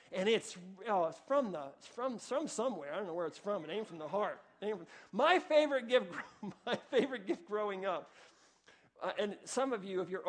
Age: 40-59